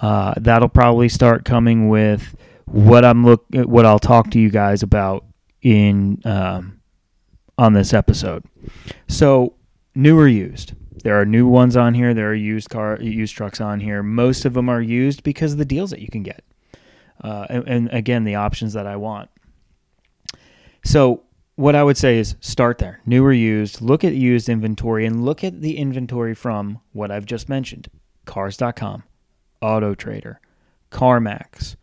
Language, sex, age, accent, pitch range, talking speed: English, male, 30-49, American, 105-125 Hz, 170 wpm